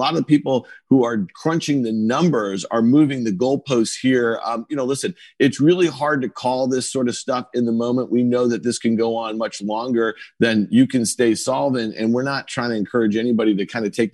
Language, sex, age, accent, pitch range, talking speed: English, male, 40-59, American, 115-135 Hz, 235 wpm